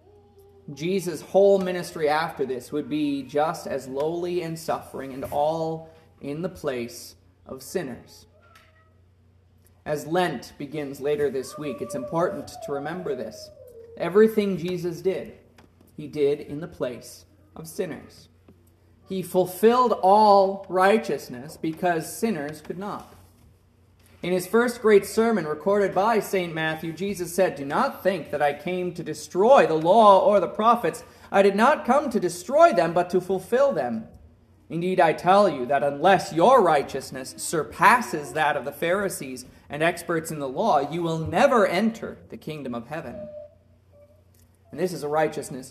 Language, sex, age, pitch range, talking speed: English, male, 30-49, 120-190 Hz, 150 wpm